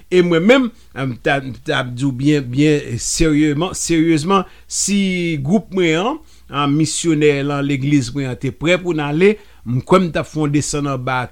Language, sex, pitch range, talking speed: English, male, 140-190 Hz, 135 wpm